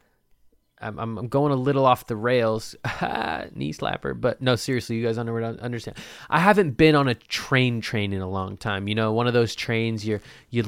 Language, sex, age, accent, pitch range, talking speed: English, male, 20-39, American, 100-125 Hz, 190 wpm